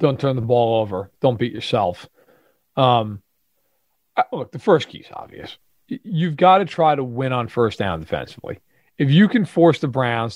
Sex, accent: male, American